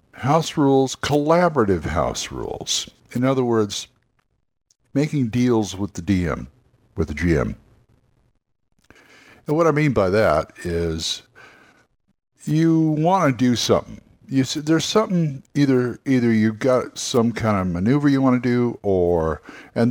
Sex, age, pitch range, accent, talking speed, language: male, 60-79, 100-140 Hz, American, 140 wpm, English